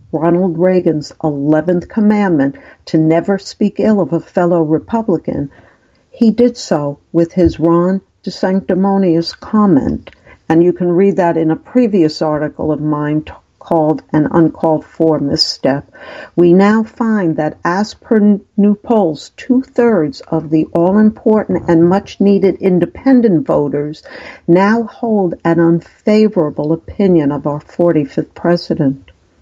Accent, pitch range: American, 160-195 Hz